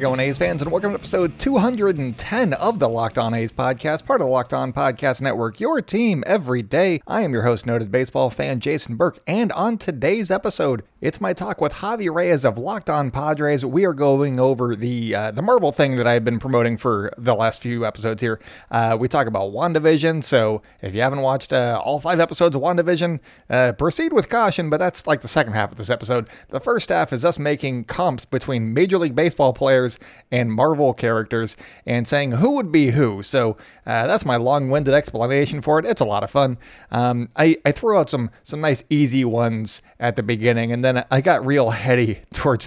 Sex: male